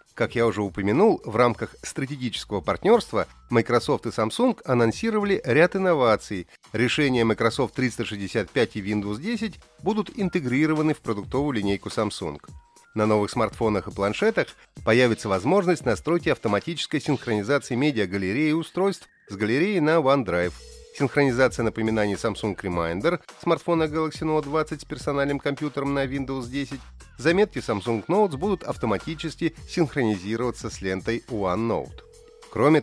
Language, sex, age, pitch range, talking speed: Russian, male, 30-49, 105-155 Hz, 120 wpm